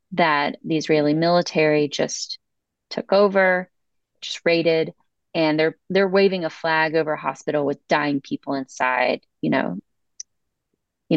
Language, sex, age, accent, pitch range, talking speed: English, female, 30-49, American, 160-200 Hz, 135 wpm